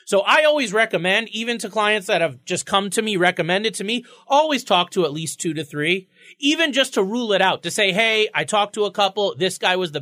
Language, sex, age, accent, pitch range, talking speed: English, male, 30-49, American, 160-210 Hz, 250 wpm